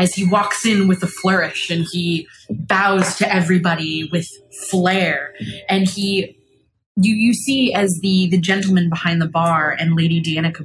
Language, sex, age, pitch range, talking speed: English, female, 20-39, 160-190 Hz, 165 wpm